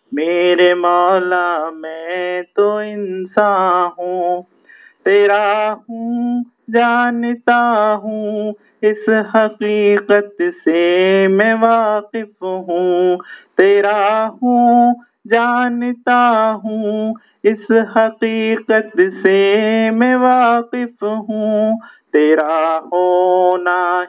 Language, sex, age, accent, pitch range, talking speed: English, male, 50-69, Indian, 175-215 Hz, 65 wpm